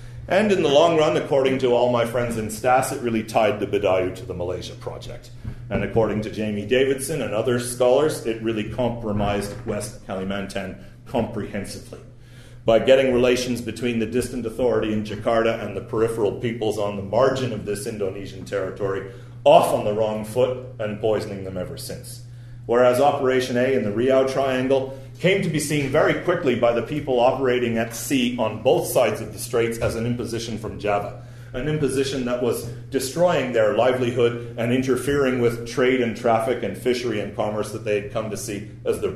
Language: English